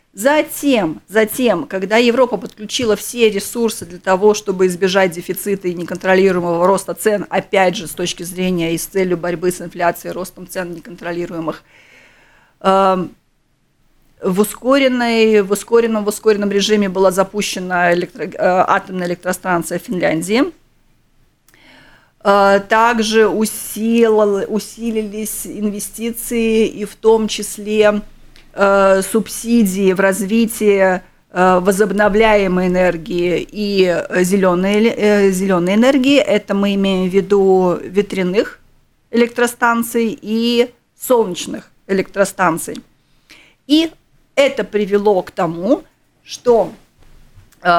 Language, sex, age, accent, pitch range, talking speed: Russian, female, 30-49, native, 185-225 Hz, 95 wpm